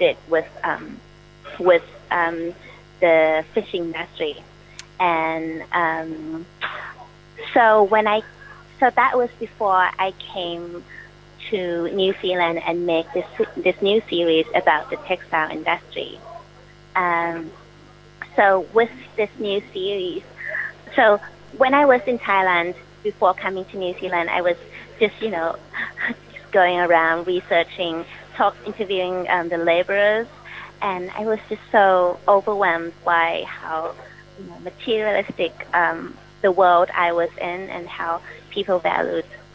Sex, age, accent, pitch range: female, 30-49, American, 170-200 Hz